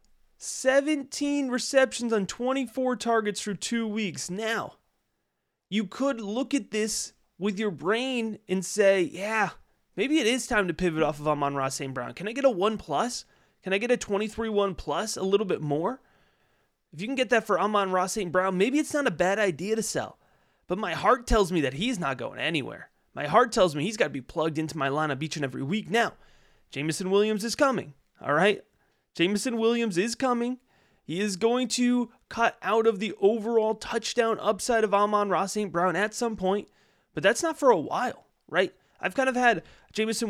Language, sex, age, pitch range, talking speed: English, male, 30-49, 175-230 Hz, 200 wpm